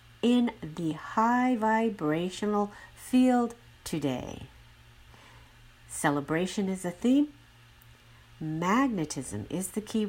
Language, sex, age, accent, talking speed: English, female, 50-69, American, 85 wpm